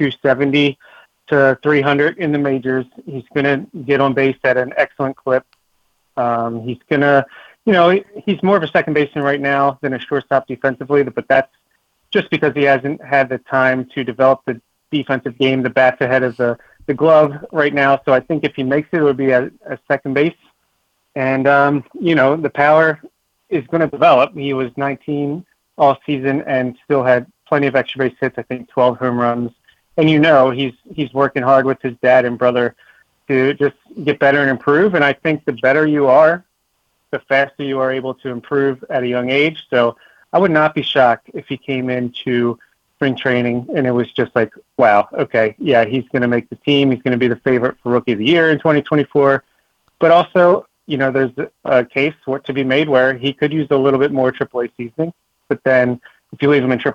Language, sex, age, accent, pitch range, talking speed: English, male, 30-49, American, 130-145 Hz, 210 wpm